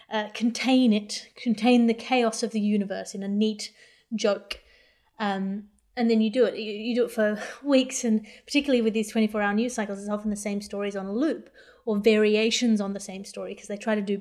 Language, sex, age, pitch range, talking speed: English, female, 30-49, 200-225 Hz, 215 wpm